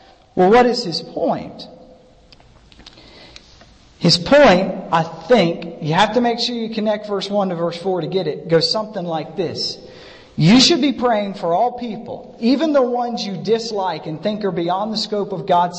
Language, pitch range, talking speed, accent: English, 175-235 Hz, 185 wpm, American